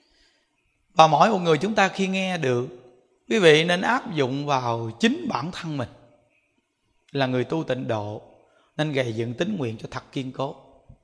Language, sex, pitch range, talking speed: Vietnamese, male, 150-220 Hz, 180 wpm